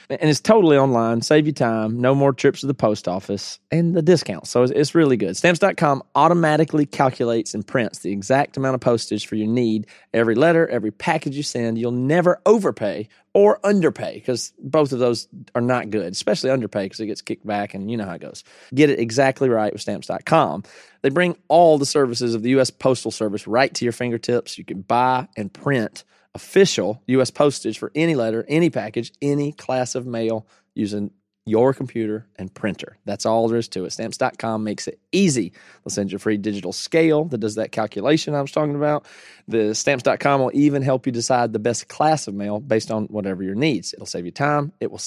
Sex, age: male, 30-49